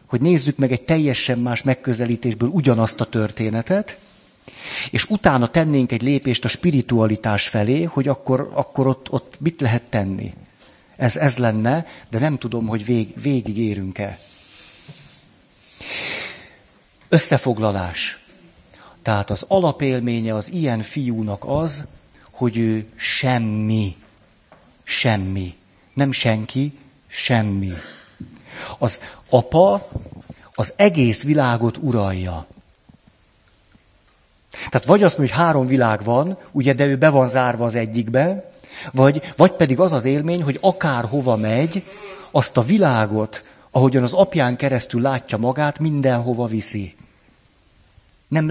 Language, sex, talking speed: Hungarian, male, 115 wpm